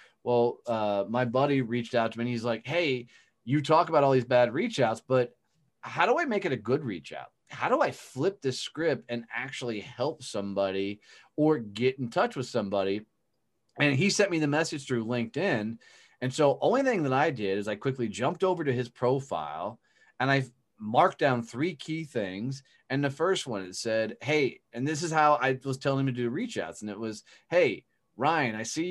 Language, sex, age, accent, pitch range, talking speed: English, male, 30-49, American, 115-150 Hz, 210 wpm